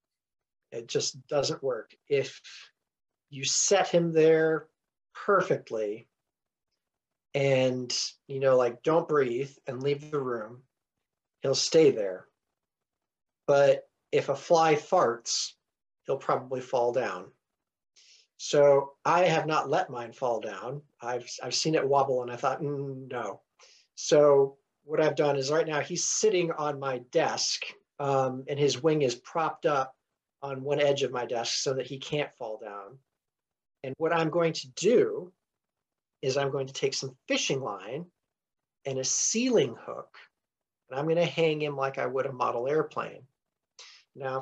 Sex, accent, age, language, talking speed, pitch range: male, American, 40-59, English, 150 wpm, 135-165 Hz